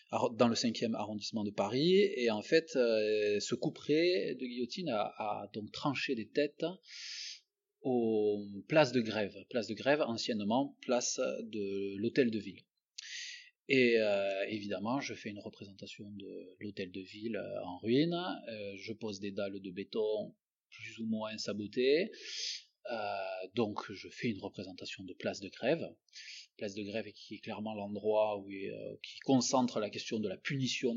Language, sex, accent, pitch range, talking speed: French, male, French, 105-130 Hz, 160 wpm